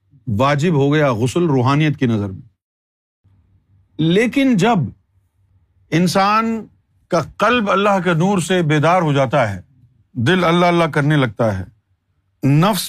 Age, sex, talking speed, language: 50-69, male, 130 wpm, Urdu